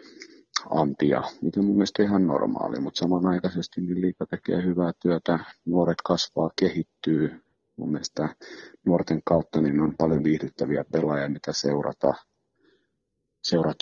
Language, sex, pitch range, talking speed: Finnish, male, 80-105 Hz, 125 wpm